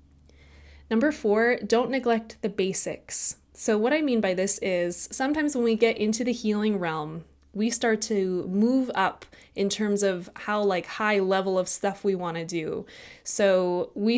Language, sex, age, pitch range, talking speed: English, female, 20-39, 185-225 Hz, 175 wpm